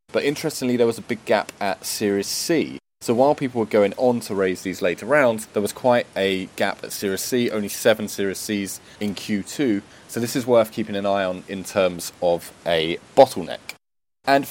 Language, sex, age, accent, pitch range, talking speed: English, male, 20-39, British, 95-120 Hz, 205 wpm